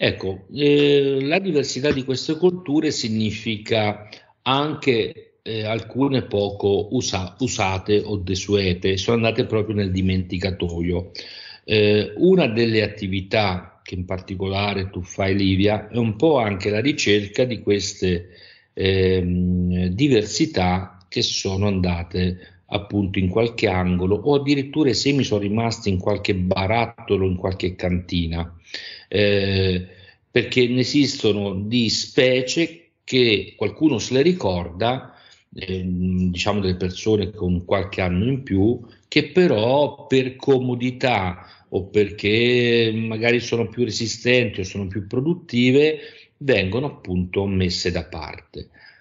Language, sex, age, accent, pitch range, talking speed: Italian, male, 50-69, native, 95-125 Hz, 120 wpm